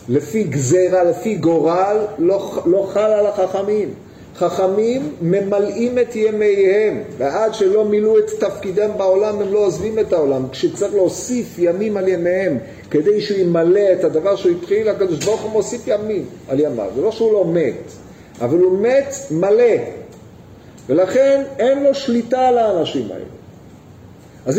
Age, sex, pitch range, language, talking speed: 50-69, male, 170-215 Hz, Hebrew, 145 wpm